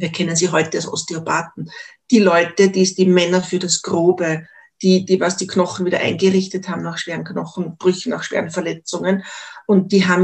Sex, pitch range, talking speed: female, 175-200 Hz, 190 wpm